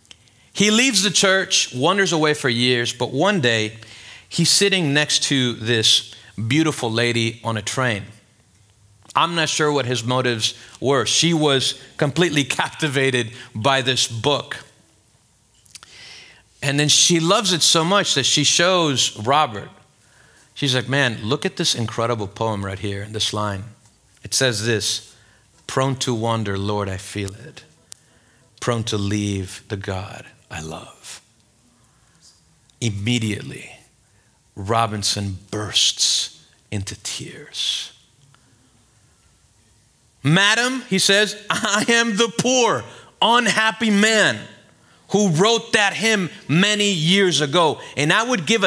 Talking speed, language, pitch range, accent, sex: 125 wpm, English, 110-175 Hz, American, male